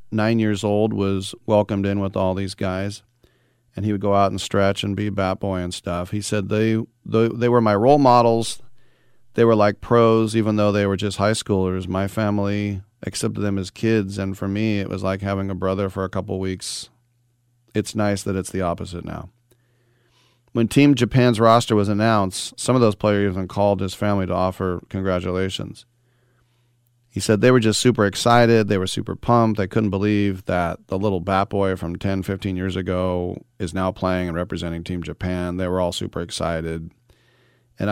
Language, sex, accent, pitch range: English, male, American, 95-120 Hz